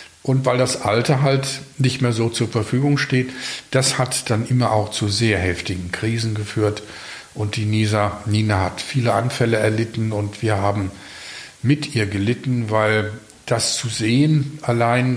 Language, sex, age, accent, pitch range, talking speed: German, male, 50-69, German, 110-130 Hz, 155 wpm